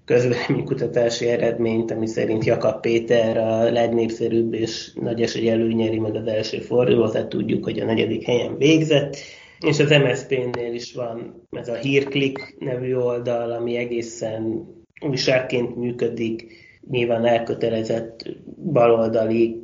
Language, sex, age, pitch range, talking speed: Hungarian, male, 20-39, 115-120 Hz, 125 wpm